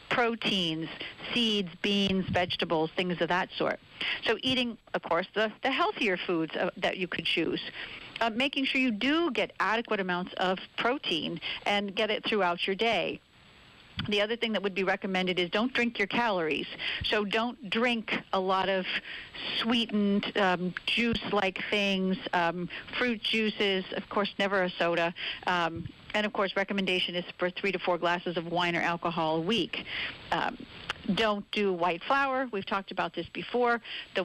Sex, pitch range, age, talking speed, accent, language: female, 180-210 Hz, 50-69, 165 wpm, American, English